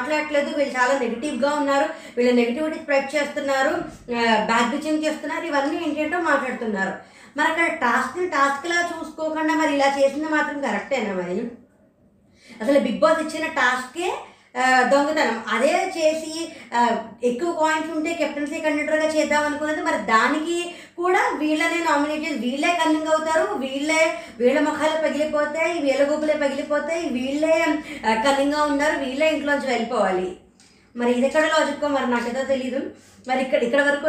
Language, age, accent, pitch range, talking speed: Telugu, 20-39, native, 265-315 Hz, 130 wpm